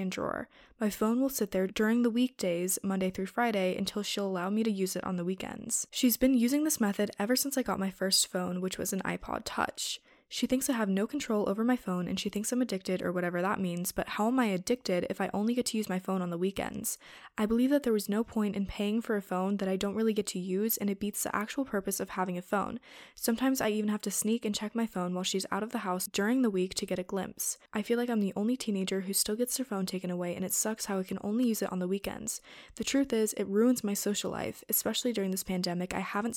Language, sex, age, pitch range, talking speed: English, female, 20-39, 185-230 Hz, 270 wpm